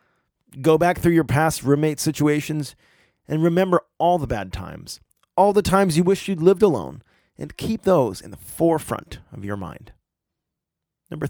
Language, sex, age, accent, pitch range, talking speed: English, male, 30-49, American, 125-175 Hz, 165 wpm